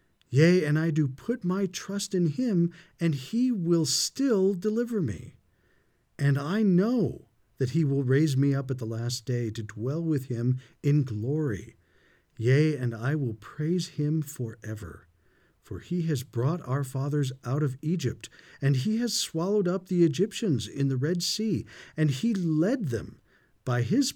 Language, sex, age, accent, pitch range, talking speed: English, male, 50-69, American, 120-170 Hz, 165 wpm